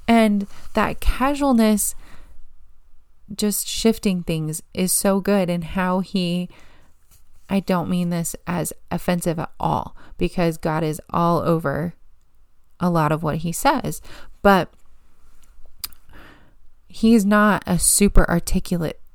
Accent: American